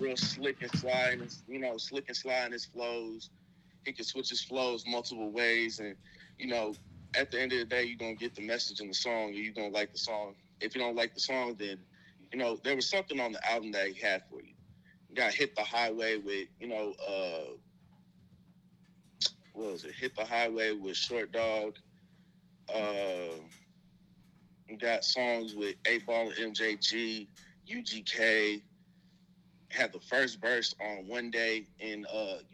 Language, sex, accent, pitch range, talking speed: English, male, American, 100-130 Hz, 185 wpm